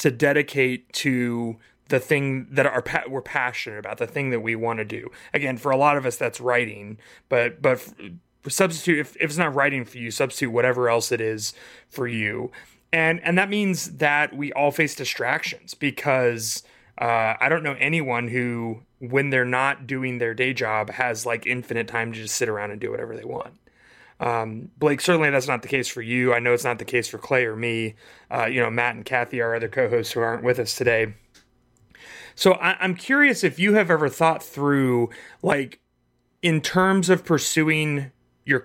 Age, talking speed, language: 30-49, 195 wpm, English